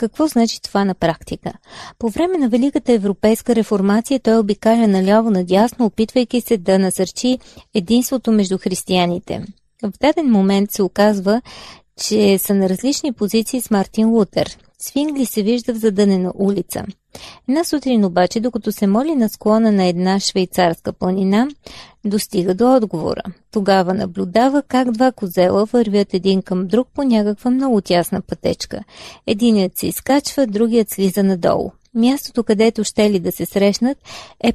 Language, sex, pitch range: Bulgarian, female, 195-245 Hz